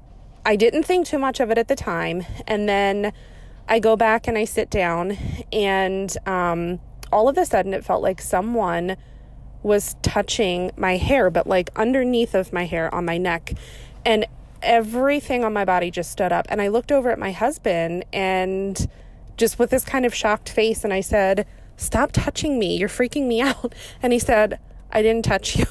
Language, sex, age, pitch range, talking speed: English, female, 20-39, 190-235 Hz, 190 wpm